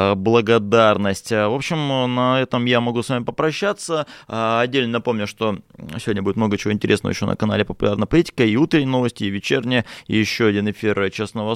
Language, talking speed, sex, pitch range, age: Russian, 170 wpm, male, 95-115 Hz, 20-39